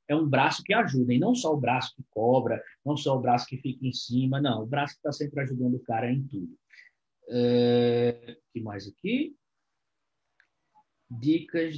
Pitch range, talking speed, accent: 130-170 Hz, 185 wpm, Brazilian